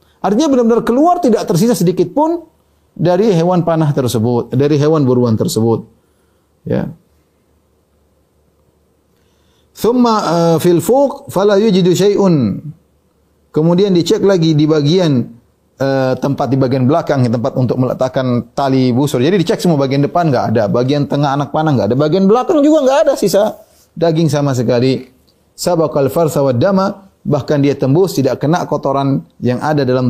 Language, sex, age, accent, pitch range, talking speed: Indonesian, male, 30-49, native, 120-165 Hz, 140 wpm